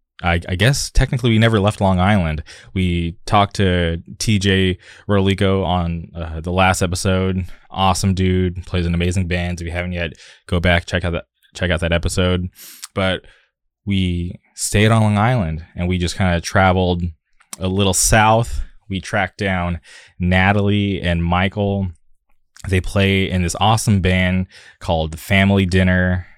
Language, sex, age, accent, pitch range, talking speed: English, male, 20-39, American, 85-100 Hz, 150 wpm